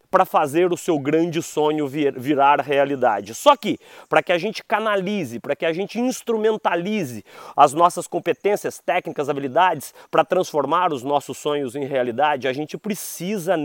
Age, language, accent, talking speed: 30-49, Portuguese, Brazilian, 155 wpm